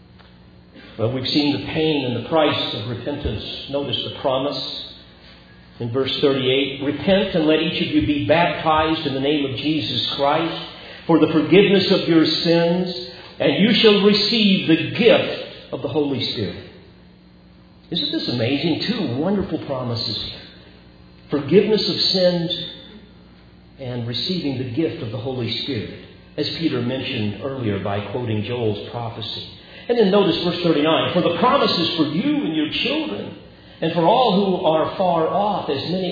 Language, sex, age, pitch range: English, male, 50-69, 115-165 Hz